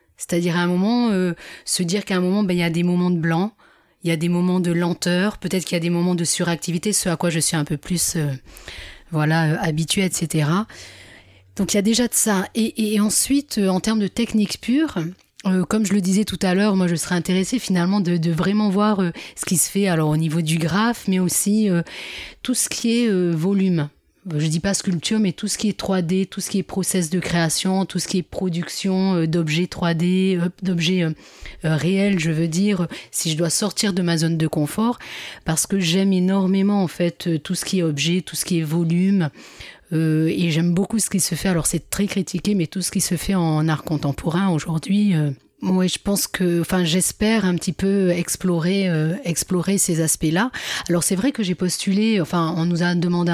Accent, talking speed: French, 225 wpm